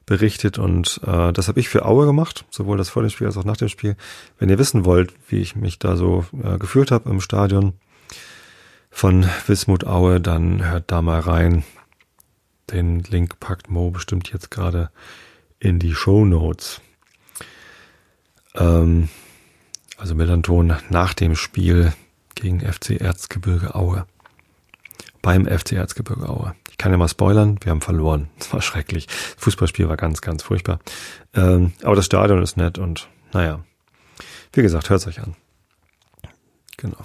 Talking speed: 155 wpm